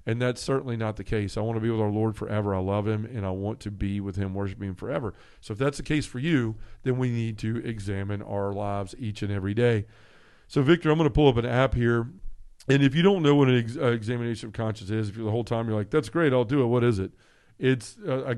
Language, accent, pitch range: English, American, 105-125 Hz